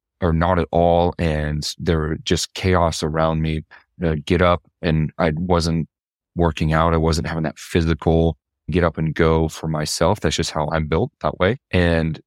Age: 30-49